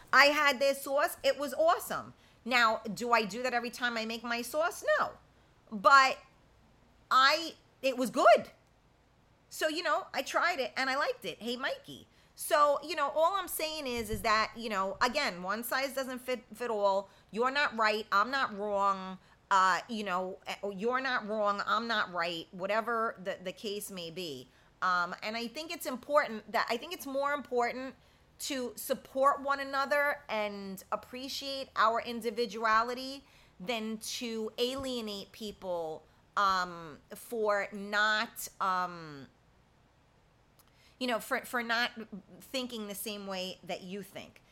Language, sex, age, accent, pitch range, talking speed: English, female, 30-49, American, 200-270 Hz, 155 wpm